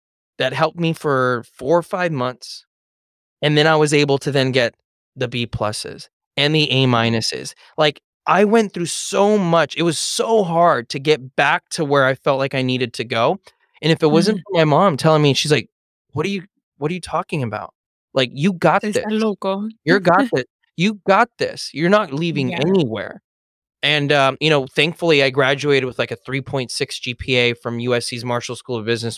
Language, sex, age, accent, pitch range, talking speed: English, male, 20-39, American, 120-170 Hz, 200 wpm